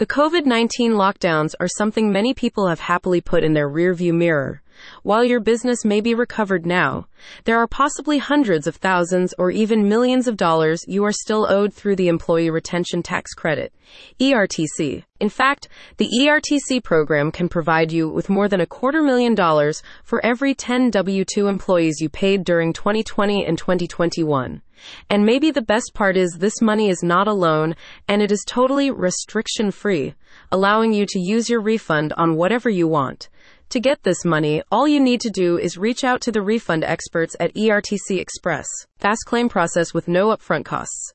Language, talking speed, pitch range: English, 180 wpm, 170-230 Hz